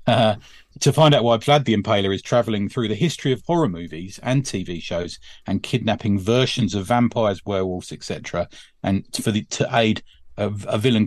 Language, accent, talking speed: English, British, 175 wpm